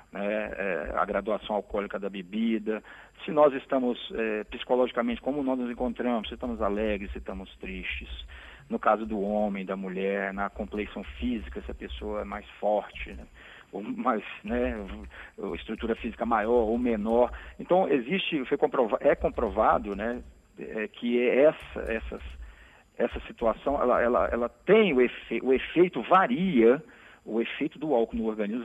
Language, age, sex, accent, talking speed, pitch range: Portuguese, 50-69, male, Brazilian, 160 wpm, 105-125 Hz